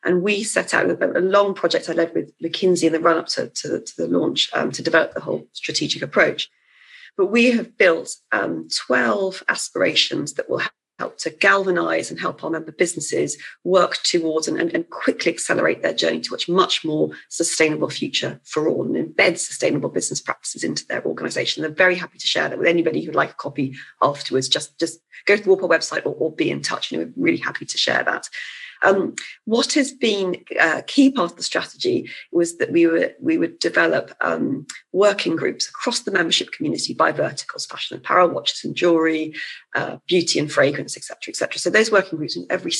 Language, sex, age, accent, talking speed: English, female, 40-59, British, 210 wpm